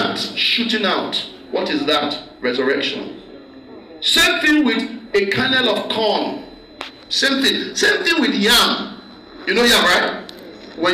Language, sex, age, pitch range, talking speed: English, male, 50-69, 210-300 Hz, 130 wpm